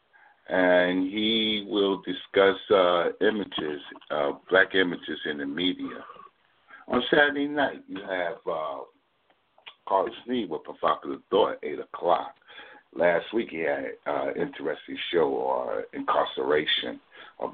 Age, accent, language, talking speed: 50-69, American, English, 125 wpm